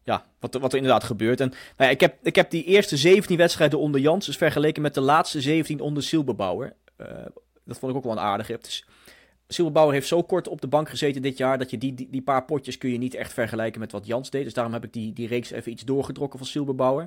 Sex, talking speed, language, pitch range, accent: male, 265 wpm, Dutch, 120-150 Hz, Dutch